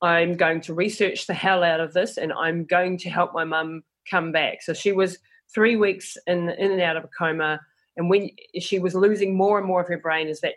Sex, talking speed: female, 245 wpm